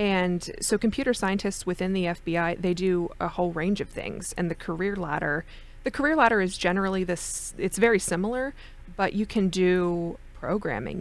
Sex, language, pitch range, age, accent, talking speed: female, English, 175-210 Hz, 20-39, American, 175 wpm